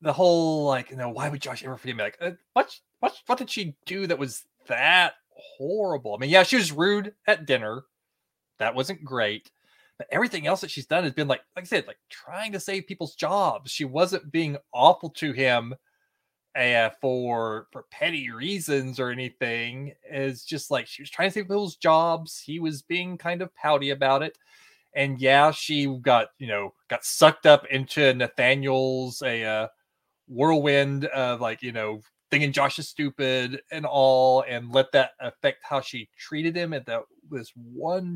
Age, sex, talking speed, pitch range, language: 20-39, male, 185 wpm, 125-165 Hz, English